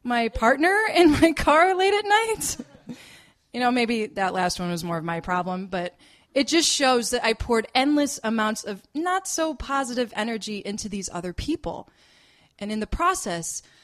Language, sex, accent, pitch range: English, female, American, 175-235 Hz